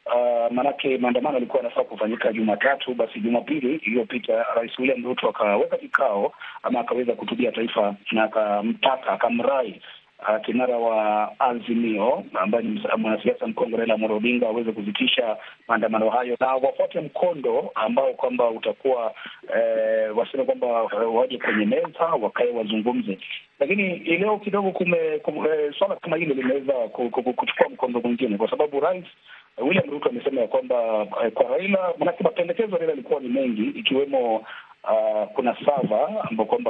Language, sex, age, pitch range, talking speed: Swahili, male, 30-49, 110-170 Hz, 135 wpm